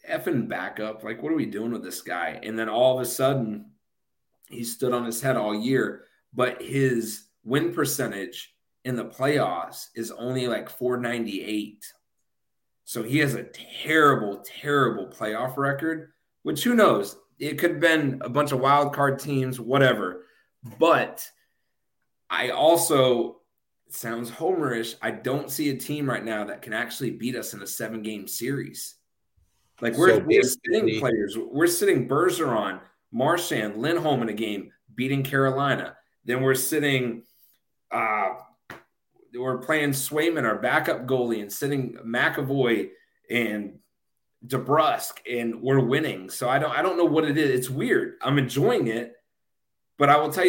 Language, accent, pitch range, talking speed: English, American, 115-145 Hz, 155 wpm